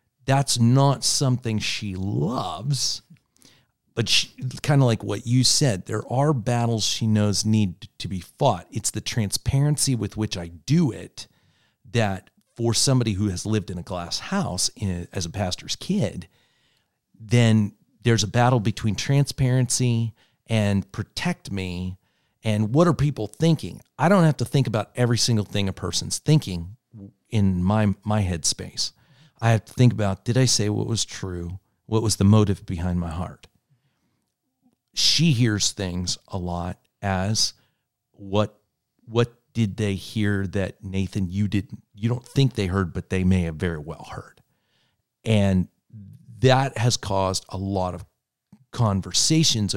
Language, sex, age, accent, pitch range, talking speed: English, male, 40-59, American, 95-125 Hz, 155 wpm